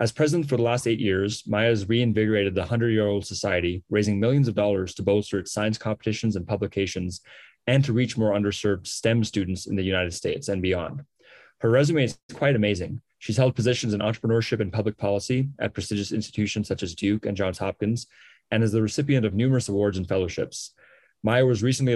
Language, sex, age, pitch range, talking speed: English, male, 20-39, 100-115 Hz, 190 wpm